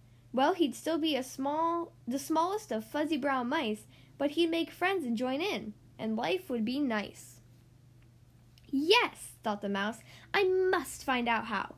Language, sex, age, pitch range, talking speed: English, female, 10-29, 205-320 Hz, 170 wpm